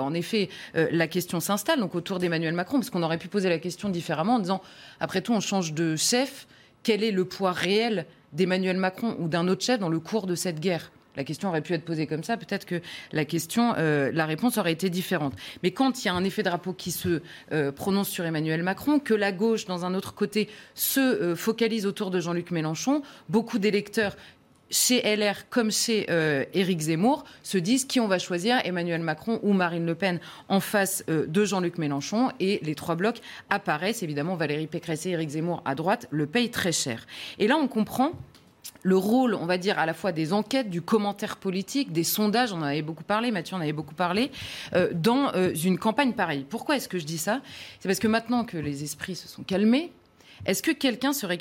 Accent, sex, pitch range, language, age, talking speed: French, female, 165-220 Hz, French, 30-49, 220 wpm